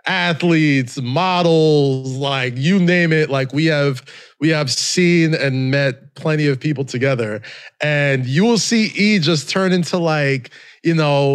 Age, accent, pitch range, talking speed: 20-39, American, 125-165 Hz, 155 wpm